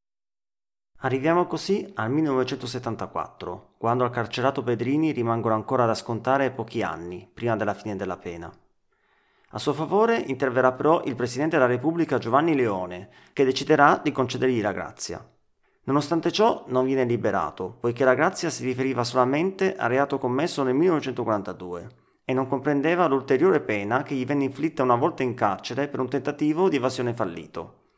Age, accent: 30-49, native